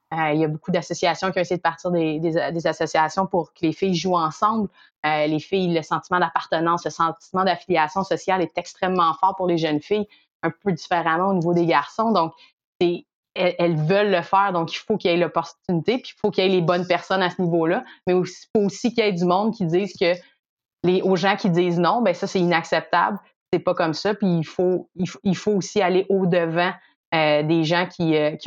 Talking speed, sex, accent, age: 235 wpm, female, Canadian, 30-49